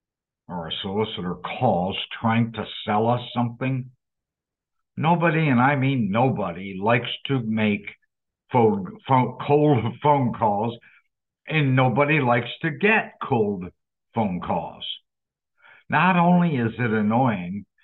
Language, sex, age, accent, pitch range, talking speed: English, male, 60-79, American, 115-150 Hz, 120 wpm